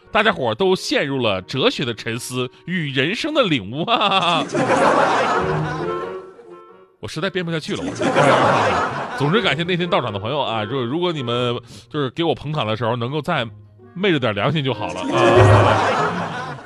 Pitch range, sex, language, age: 120-180 Hz, male, Chinese, 30-49